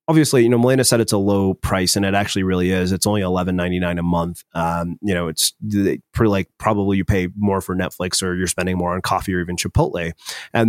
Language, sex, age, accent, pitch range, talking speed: English, male, 30-49, American, 90-110 Hz, 230 wpm